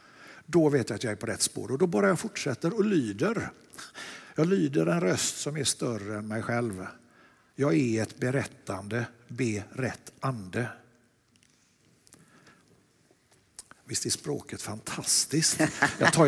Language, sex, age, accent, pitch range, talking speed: Swedish, male, 60-79, native, 125-200 Hz, 135 wpm